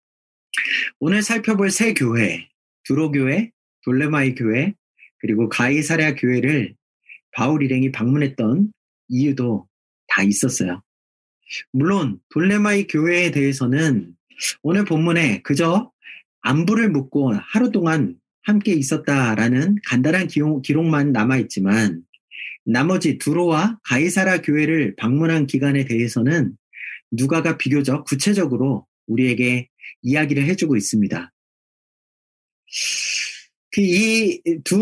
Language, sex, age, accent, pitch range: Korean, male, 40-59, native, 125-190 Hz